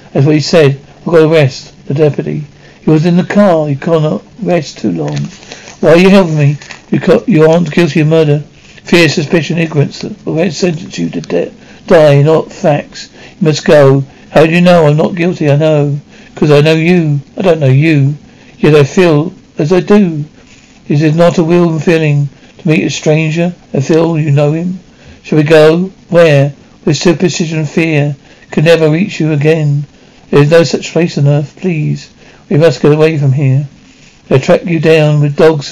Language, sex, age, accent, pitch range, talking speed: English, male, 60-79, British, 145-170 Hz, 195 wpm